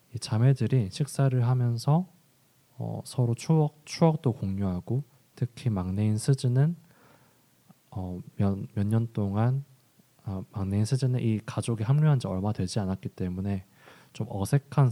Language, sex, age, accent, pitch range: Korean, male, 20-39, native, 100-130 Hz